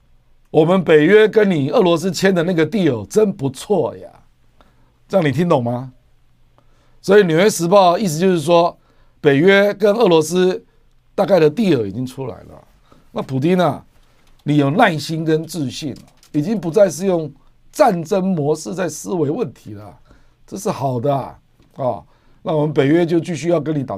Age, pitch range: 50-69, 135-190 Hz